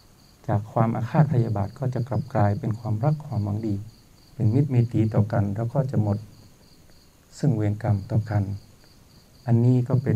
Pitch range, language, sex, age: 110-130 Hz, Thai, male, 60-79